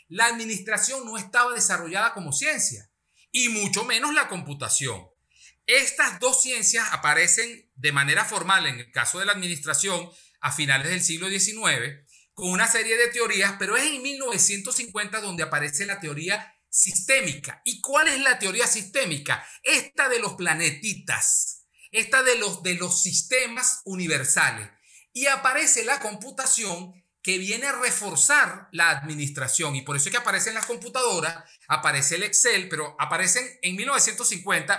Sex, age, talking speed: male, 50-69, 150 wpm